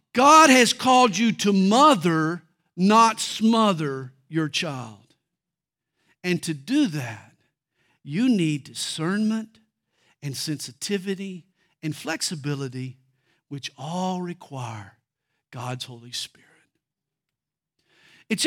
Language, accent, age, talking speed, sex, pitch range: English, American, 50-69, 90 wpm, male, 160-255 Hz